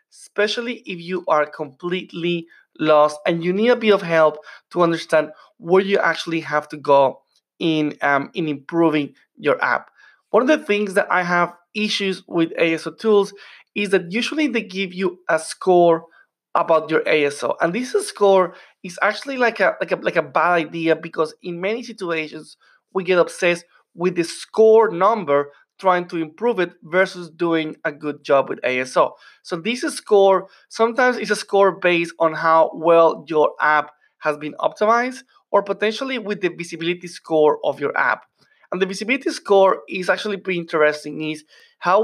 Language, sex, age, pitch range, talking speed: English, male, 30-49, 165-210 Hz, 170 wpm